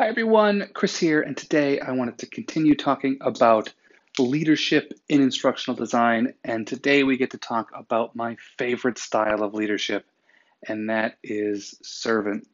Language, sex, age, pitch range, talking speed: English, male, 30-49, 110-155 Hz, 155 wpm